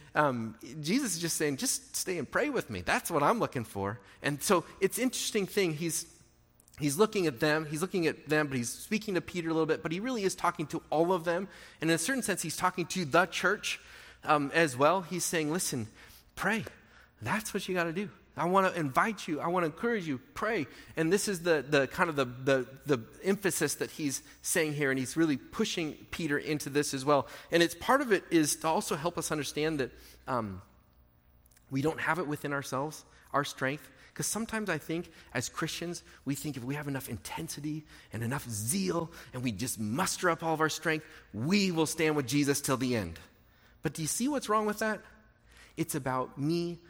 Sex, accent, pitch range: male, American, 140-175 Hz